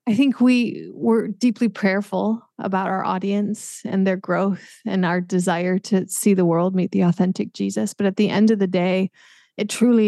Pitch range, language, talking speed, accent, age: 180-210 Hz, English, 190 wpm, American, 20-39